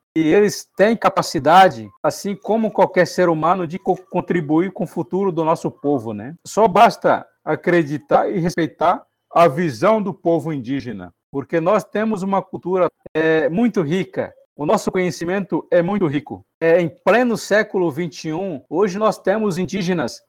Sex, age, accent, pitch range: male, 60-79, Brazilian, 170-210 Hz